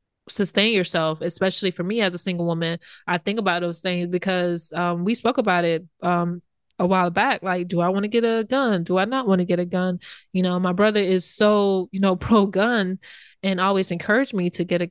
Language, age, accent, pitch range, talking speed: English, 20-39, American, 175-195 Hz, 225 wpm